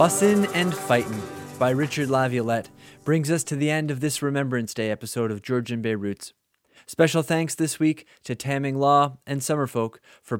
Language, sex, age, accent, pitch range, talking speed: English, male, 20-39, American, 120-145 Hz, 175 wpm